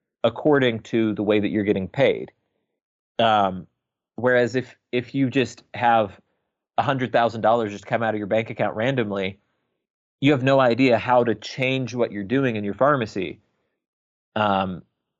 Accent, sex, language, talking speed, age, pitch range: American, male, English, 150 wpm, 30-49, 100-125 Hz